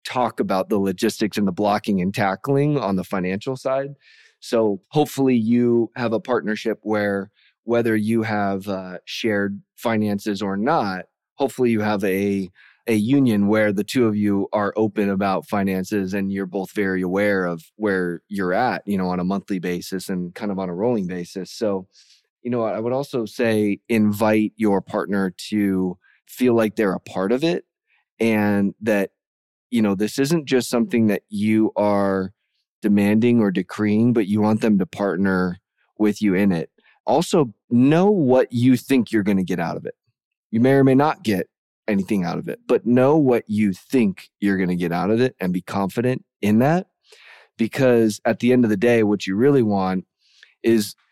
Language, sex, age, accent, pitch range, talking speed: English, male, 20-39, American, 100-115 Hz, 185 wpm